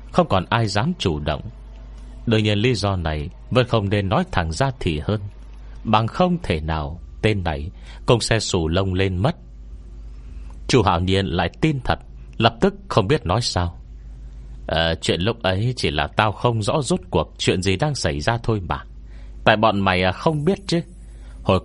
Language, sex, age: Vietnamese, male, 30-49